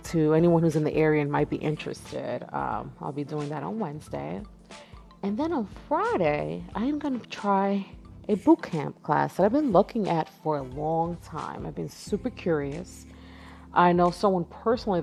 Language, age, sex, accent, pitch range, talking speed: English, 30-49, female, American, 150-195 Hz, 190 wpm